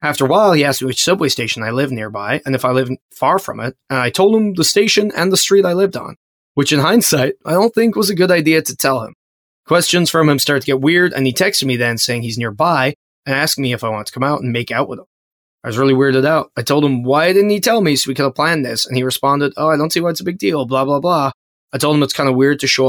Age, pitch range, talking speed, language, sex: 20-39, 125-165 Hz, 305 wpm, English, male